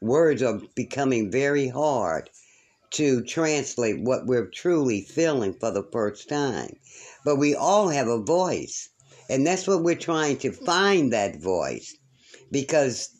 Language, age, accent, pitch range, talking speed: English, 60-79, American, 115-150 Hz, 140 wpm